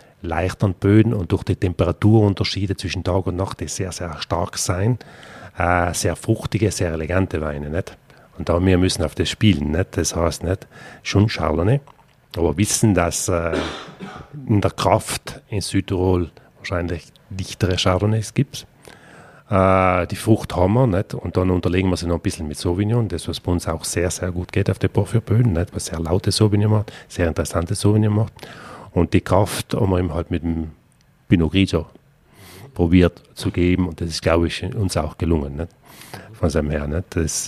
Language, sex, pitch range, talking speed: German, male, 85-110 Hz, 185 wpm